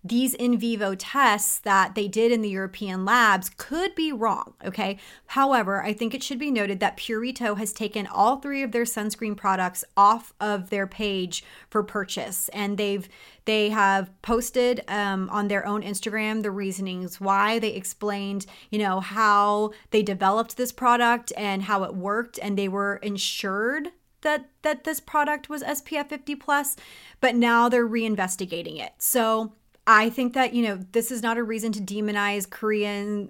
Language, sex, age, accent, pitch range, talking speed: English, female, 30-49, American, 200-245 Hz, 175 wpm